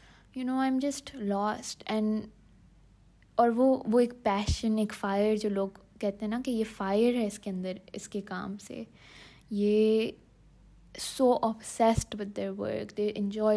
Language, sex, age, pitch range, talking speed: Urdu, female, 20-39, 210-255 Hz, 130 wpm